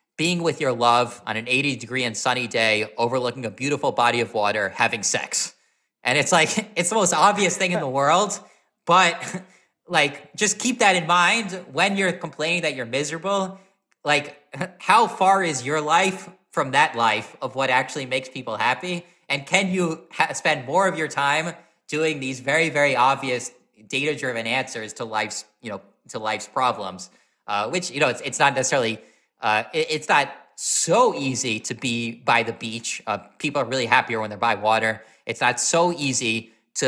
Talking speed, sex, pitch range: 185 wpm, male, 115-160 Hz